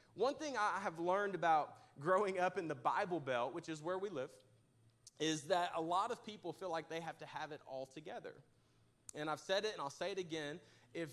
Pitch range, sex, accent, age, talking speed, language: 145-205 Hz, male, American, 30-49, 225 wpm, English